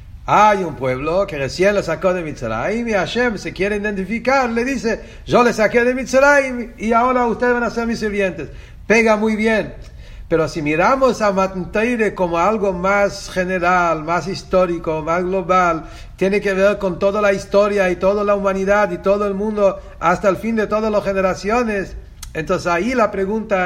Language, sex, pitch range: English, male, 175-215 Hz